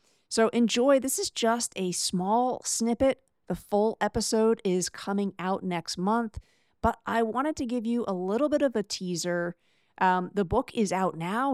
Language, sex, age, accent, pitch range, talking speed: English, female, 40-59, American, 180-225 Hz, 175 wpm